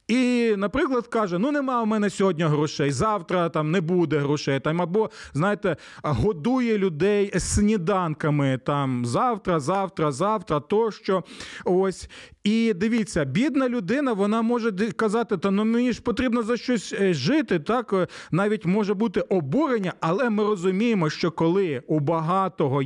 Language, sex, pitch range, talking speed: Ukrainian, male, 170-220 Hz, 140 wpm